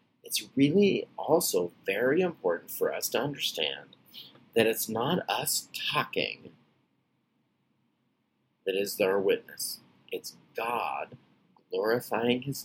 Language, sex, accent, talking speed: English, male, American, 105 wpm